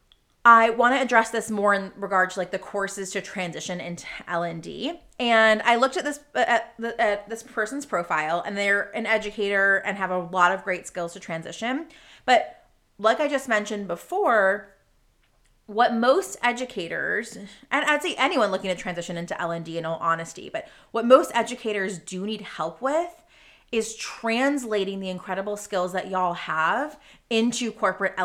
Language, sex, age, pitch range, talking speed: English, female, 30-49, 185-245 Hz, 170 wpm